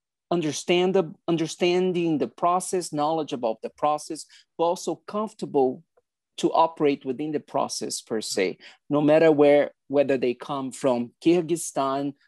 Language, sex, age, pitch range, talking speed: English, male, 40-59, 135-165 Hz, 130 wpm